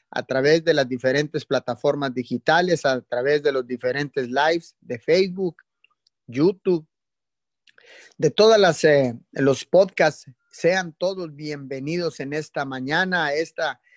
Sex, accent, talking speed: male, Mexican, 130 wpm